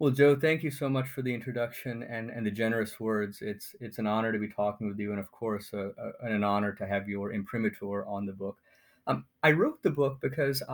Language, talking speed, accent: English, 240 wpm, American